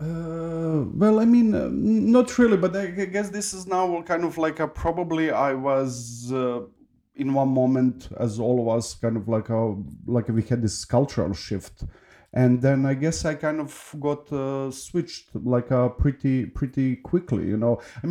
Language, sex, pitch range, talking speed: English, male, 115-145 Hz, 190 wpm